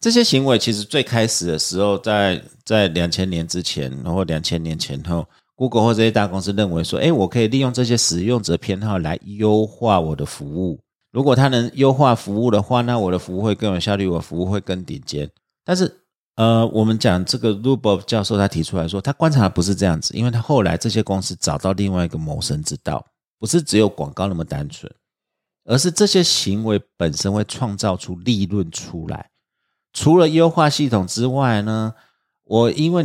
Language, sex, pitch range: Chinese, male, 95-130 Hz